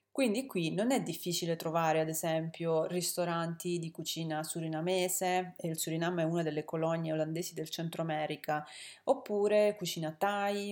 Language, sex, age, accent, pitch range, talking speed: Italian, female, 30-49, native, 160-195 Hz, 145 wpm